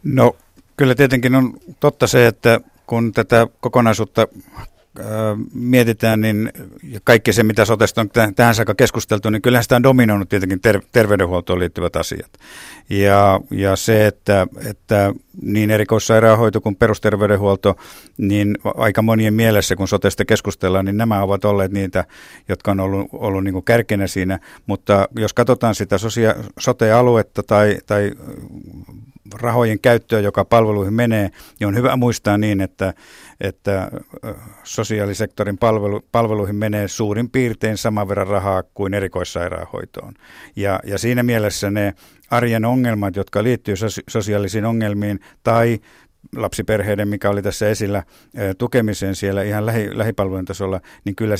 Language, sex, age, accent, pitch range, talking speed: Finnish, male, 50-69, native, 100-115 Hz, 135 wpm